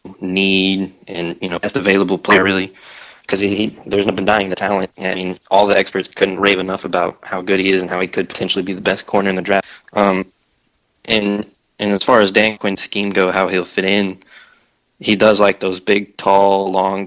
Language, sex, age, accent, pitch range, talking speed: English, male, 20-39, American, 95-105 Hz, 220 wpm